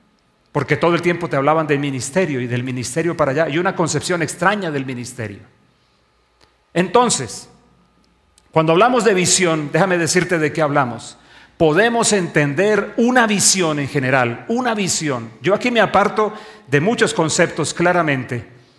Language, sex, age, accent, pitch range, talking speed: English, male, 40-59, Mexican, 145-190 Hz, 145 wpm